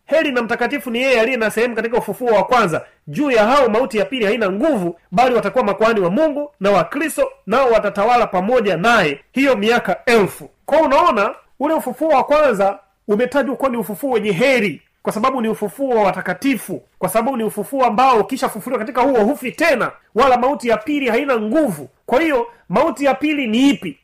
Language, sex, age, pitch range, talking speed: Swahili, male, 30-49, 195-255 Hz, 180 wpm